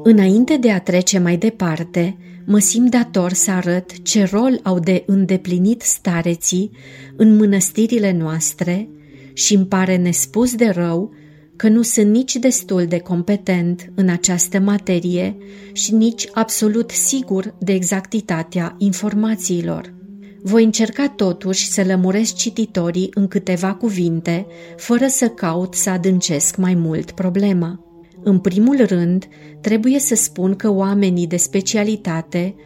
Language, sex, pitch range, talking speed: Romanian, female, 180-210 Hz, 130 wpm